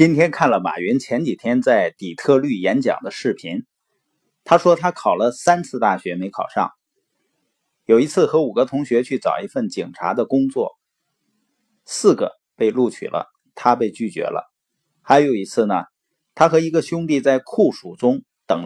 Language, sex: Chinese, male